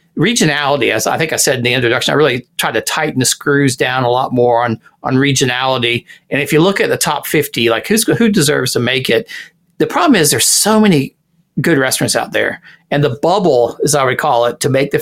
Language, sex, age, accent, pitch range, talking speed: English, male, 40-59, American, 135-170 Hz, 235 wpm